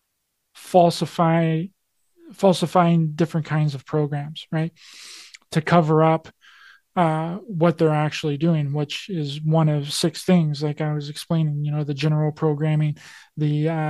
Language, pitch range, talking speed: English, 155-185 Hz, 135 wpm